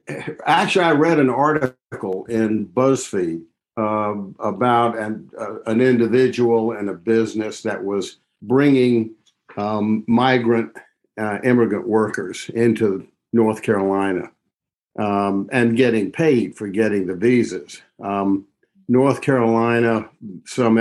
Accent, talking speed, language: American, 110 wpm, English